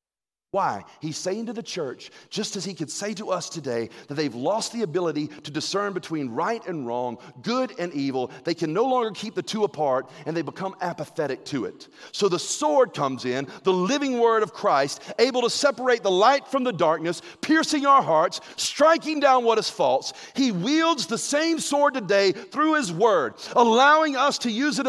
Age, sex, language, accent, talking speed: 40-59, male, English, American, 200 wpm